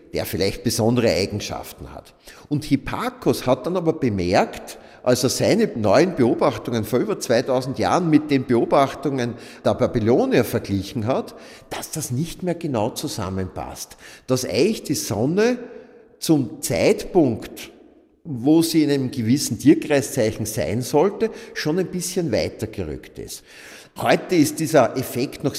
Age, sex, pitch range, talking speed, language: 50-69, male, 110-155 Hz, 135 wpm, German